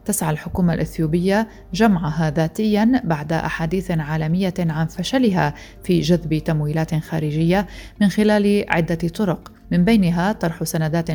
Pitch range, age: 160-185 Hz, 30-49